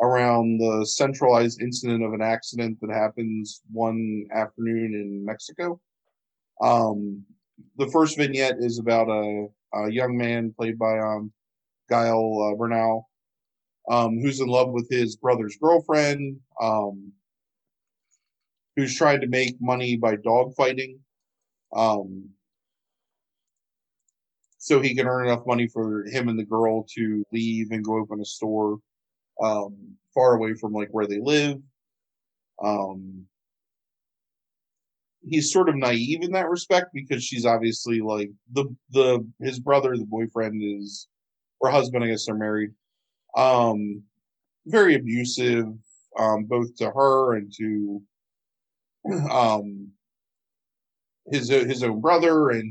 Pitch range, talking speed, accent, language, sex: 110-130 Hz, 125 wpm, American, English, male